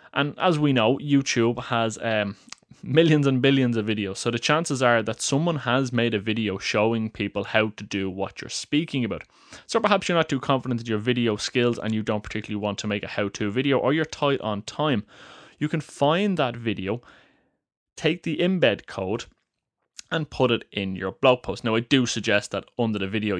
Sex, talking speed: male, 205 wpm